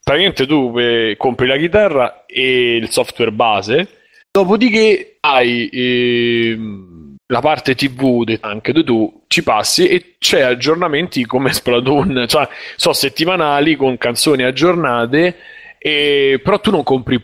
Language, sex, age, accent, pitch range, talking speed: Italian, male, 30-49, native, 120-155 Hz, 125 wpm